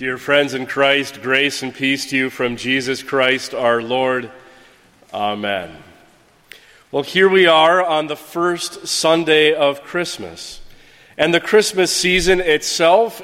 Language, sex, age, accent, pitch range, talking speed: English, male, 40-59, American, 135-170 Hz, 135 wpm